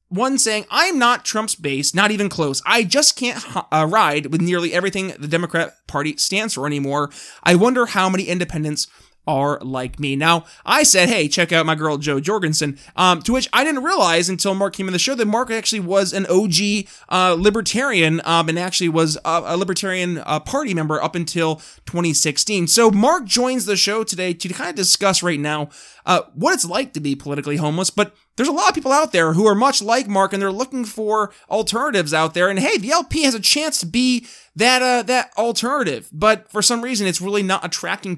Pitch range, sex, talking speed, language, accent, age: 165-220 Hz, male, 210 wpm, English, American, 20-39